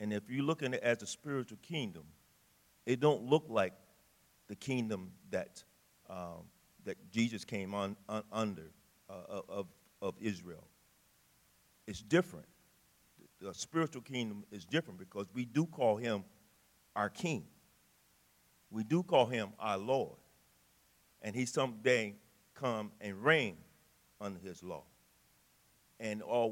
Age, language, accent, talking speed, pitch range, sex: 50-69, English, American, 135 wpm, 100-140 Hz, male